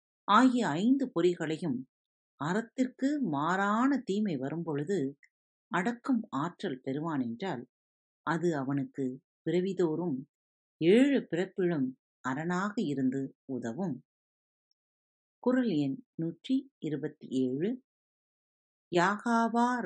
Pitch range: 145-215 Hz